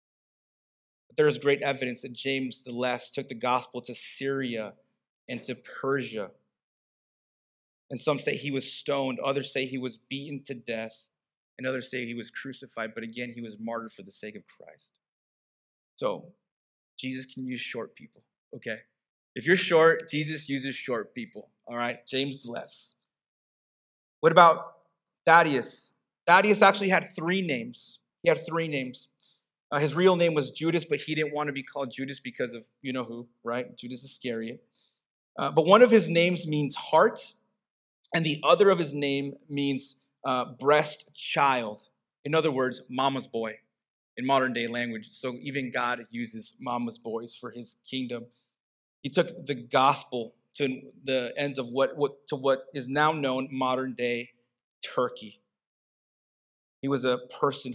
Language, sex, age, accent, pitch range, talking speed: English, male, 30-49, American, 120-145 Hz, 155 wpm